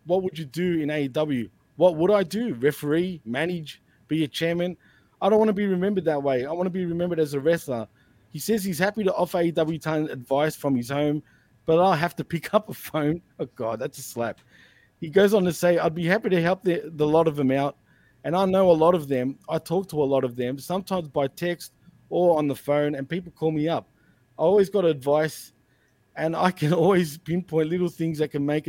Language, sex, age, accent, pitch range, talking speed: English, male, 20-39, Australian, 140-175 Hz, 235 wpm